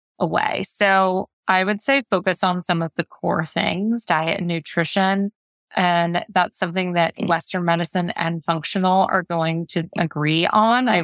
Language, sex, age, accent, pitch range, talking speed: English, female, 20-39, American, 170-205 Hz, 160 wpm